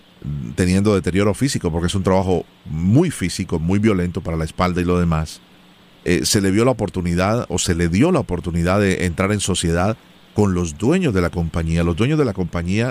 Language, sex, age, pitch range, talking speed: Spanish, male, 40-59, 95-125 Hz, 205 wpm